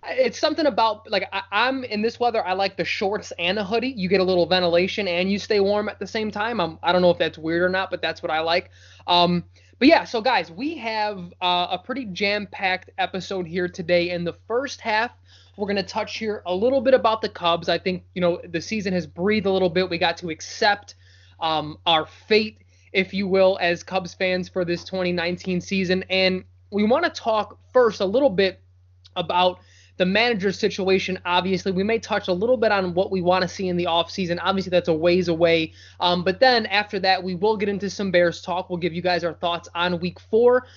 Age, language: 20-39, English